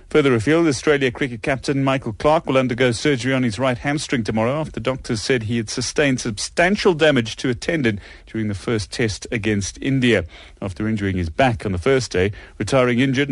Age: 30-49